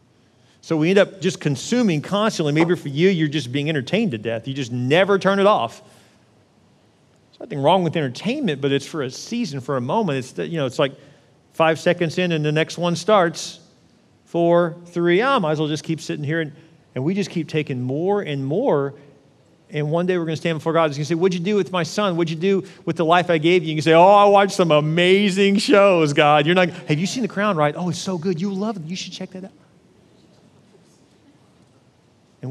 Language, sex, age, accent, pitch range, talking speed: English, male, 40-59, American, 145-195 Hz, 230 wpm